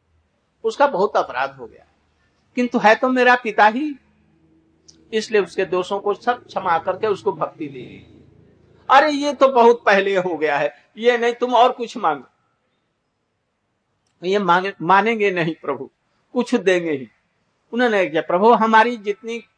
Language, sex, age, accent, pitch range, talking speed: Hindi, male, 60-79, native, 195-250 Hz, 140 wpm